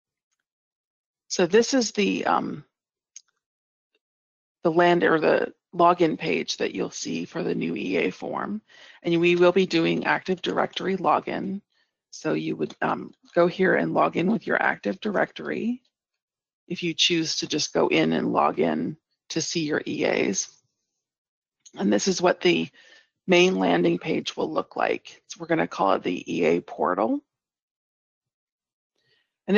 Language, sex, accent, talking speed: English, female, American, 150 wpm